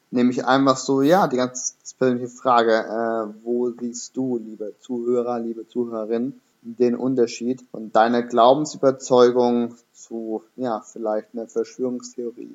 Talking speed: 125 wpm